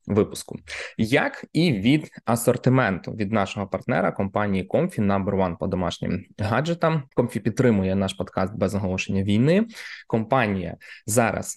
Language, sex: Ukrainian, male